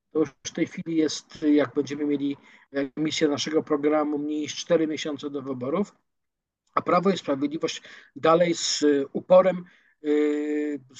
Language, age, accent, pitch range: Polish, 50-69, native, 145-170 Hz